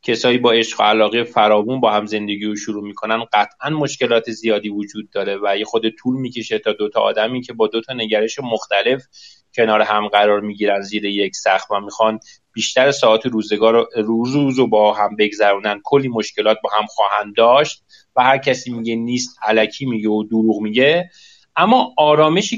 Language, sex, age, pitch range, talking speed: Persian, male, 30-49, 110-155 Hz, 180 wpm